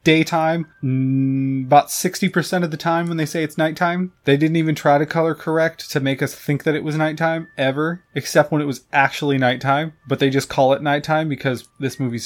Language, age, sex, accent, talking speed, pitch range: English, 20-39, male, American, 210 wpm, 130-165 Hz